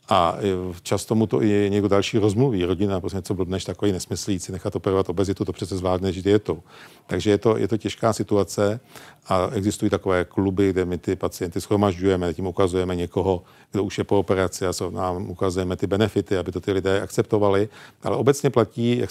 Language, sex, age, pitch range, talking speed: Czech, male, 50-69, 95-110 Hz, 190 wpm